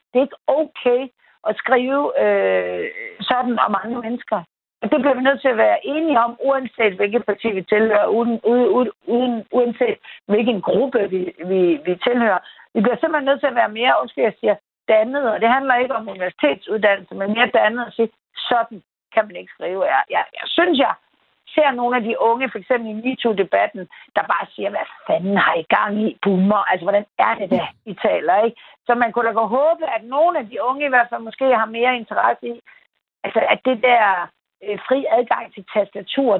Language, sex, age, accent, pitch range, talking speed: Danish, female, 60-79, native, 210-265 Hz, 205 wpm